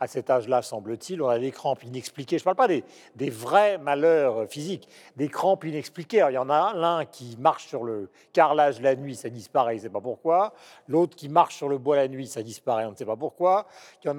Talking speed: 250 wpm